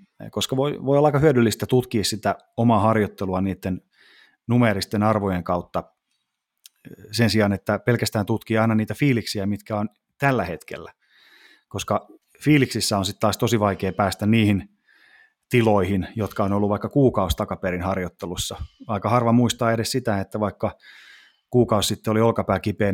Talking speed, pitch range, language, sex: 145 wpm, 95-110 Hz, Finnish, male